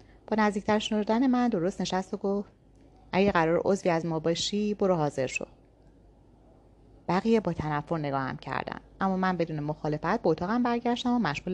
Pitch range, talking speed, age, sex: 160-220 Hz, 155 wpm, 30-49, female